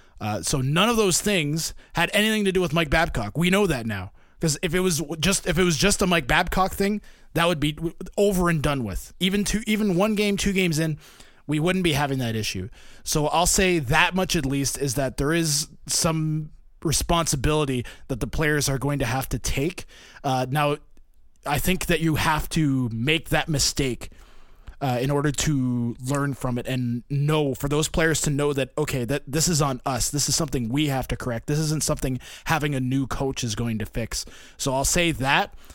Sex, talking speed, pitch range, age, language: male, 215 wpm, 130-165 Hz, 20-39, English